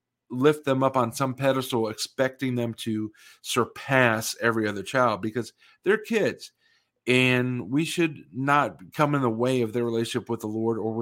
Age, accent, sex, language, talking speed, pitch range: 40-59, American, male, English, 170 wpm, 120-150 Hz